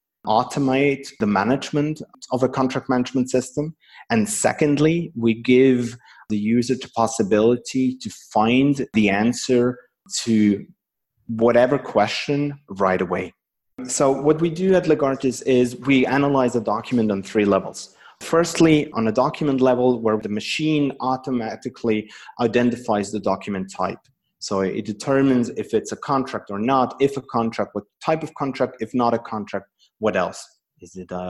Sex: male